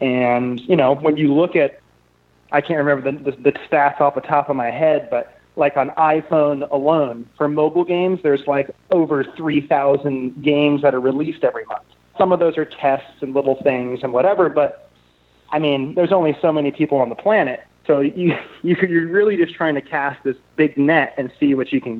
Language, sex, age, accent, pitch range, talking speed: English, male, 30-49, American, 140-175 Hz, 200 wpm